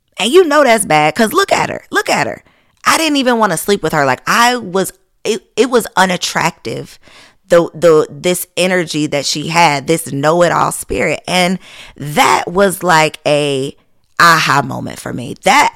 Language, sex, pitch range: English, female, 155-215 Hz